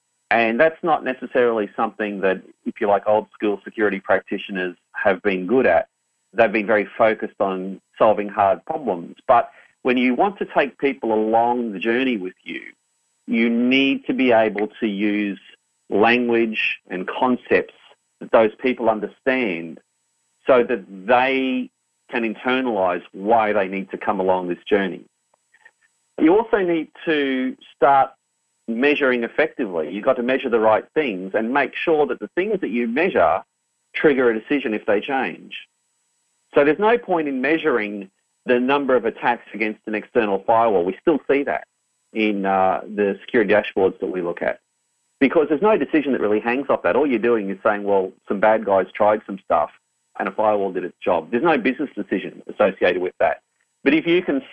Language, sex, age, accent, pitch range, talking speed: English, male, 40-59, Australian, 105-130 Hz, 175 wpm